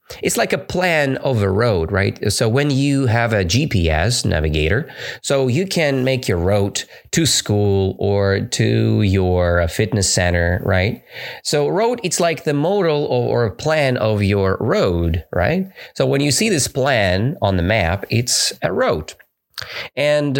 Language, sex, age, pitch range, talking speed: English, male, 30-49, 95-140 Hz, 160 wpm